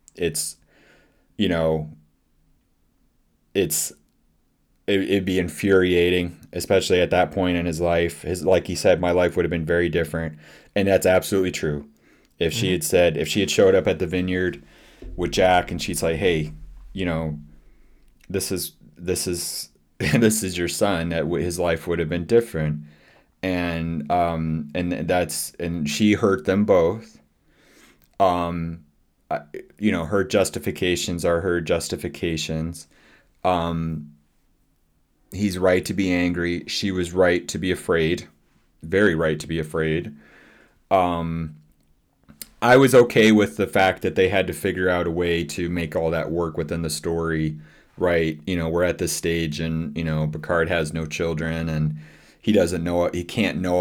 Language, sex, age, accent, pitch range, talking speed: English, male, 20-39, American, 80-90 Hz, 160 wpm